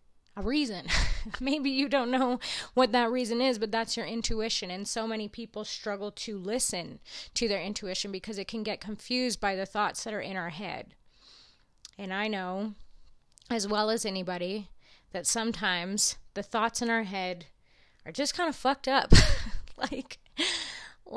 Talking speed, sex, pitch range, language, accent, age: 165 wpm, female, 200-245 Hz, English, American, 20-39